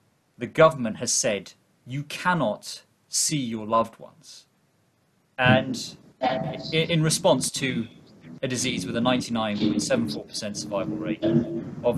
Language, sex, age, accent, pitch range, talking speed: English, male, 30-49, British, 105-140 Hz, 110 wpm